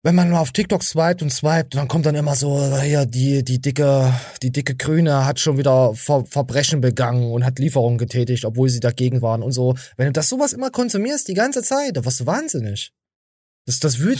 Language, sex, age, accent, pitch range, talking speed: German, male, 20-39, German, 120-165 Hz, 215 wpm